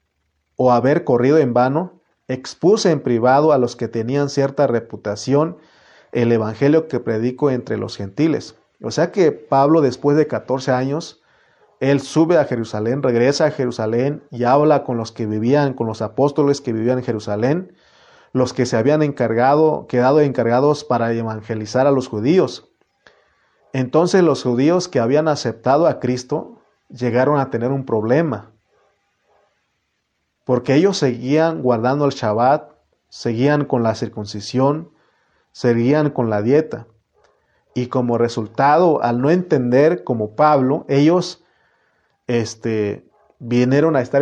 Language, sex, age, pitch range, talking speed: Spanish, male, 40-59, 115-145 Hz, 135 wpm